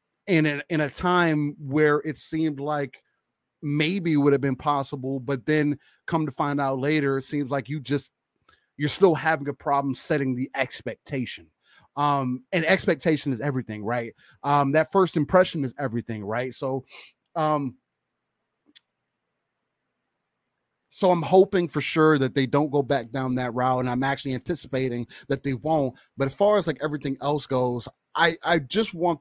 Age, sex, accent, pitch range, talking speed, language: 30-49, male, American, 130-150 Hz, 170 wpm, English